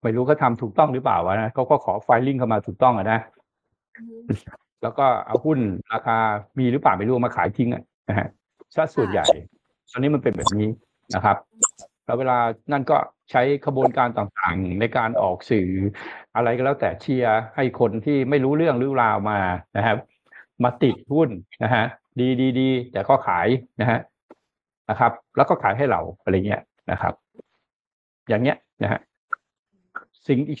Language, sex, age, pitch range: Thai, male, 60-79, 115-155 Hz